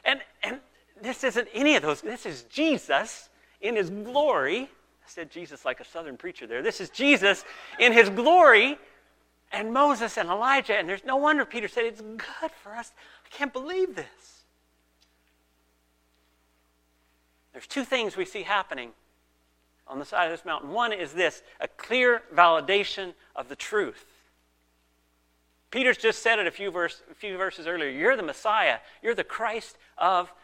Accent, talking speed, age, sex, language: American, 160 wpm, 40-59, male, English